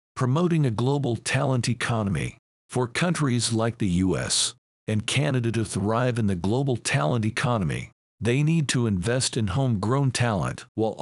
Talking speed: 145 wpm